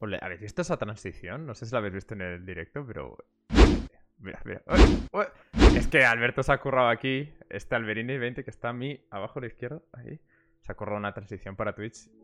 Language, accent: Spanish, Spanish